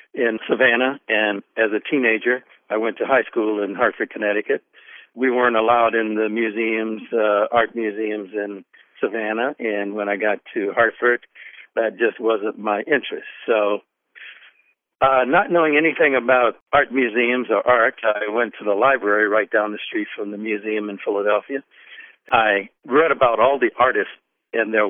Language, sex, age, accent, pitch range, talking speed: English, male, 60-79, American, 110-130 Hz, 165 wpm